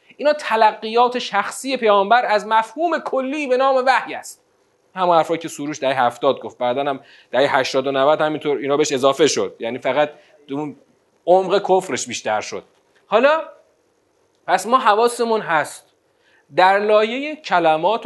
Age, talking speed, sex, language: 30-49, 145 wpm, male, Persian